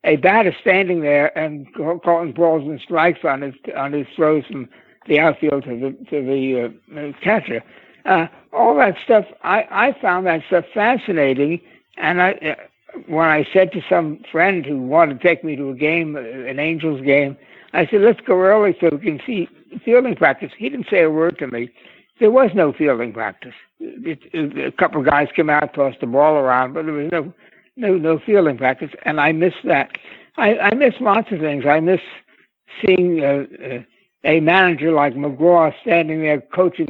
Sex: male